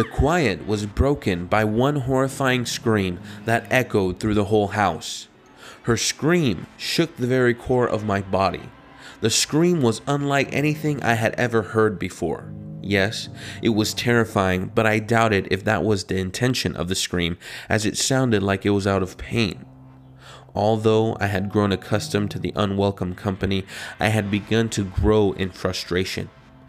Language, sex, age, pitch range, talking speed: English, male, 20-39, 100-145 Hz, 165 wpm